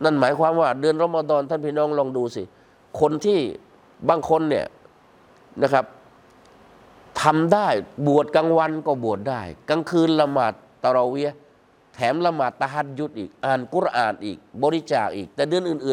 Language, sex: Thai, male